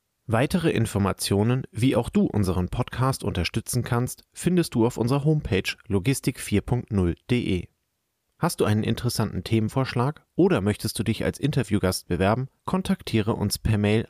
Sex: male